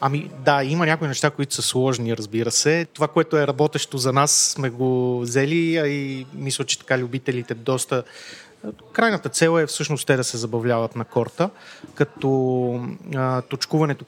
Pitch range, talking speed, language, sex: 125-150 Hz, 160 wpm, Bulgarian, male